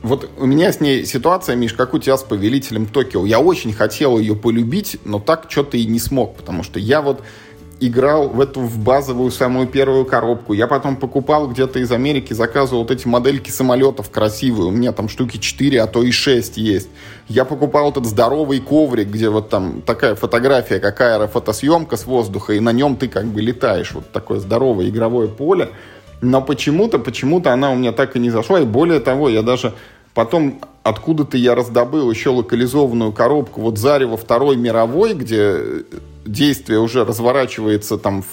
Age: 20-39